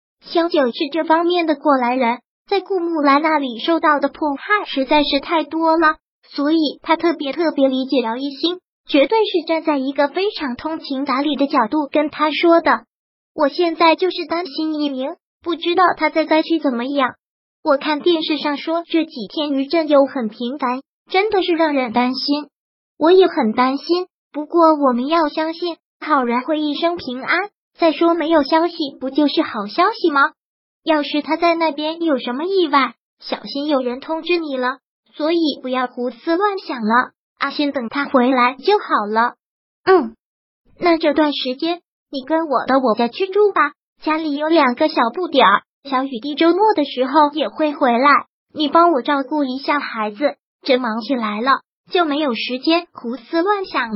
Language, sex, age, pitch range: Chinese, male, 20-39, 265-330 Hz